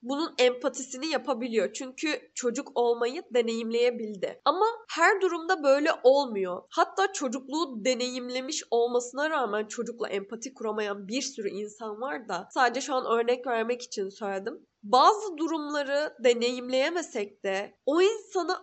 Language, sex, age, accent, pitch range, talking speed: Turkish, female, 10-29, native, 235-320 Hz, 120 wpm